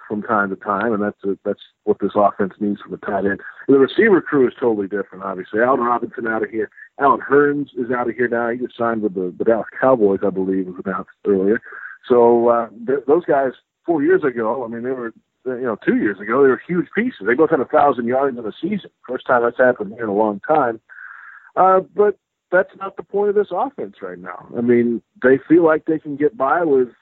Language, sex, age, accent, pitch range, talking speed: English, male, 50-69, American, 120-145 Hz, 240 wpm